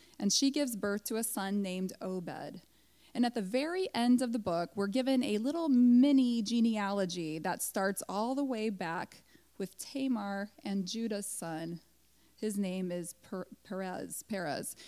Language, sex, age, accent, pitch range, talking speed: English, female, 20-39, American, 180-250 Hz, 160 wpm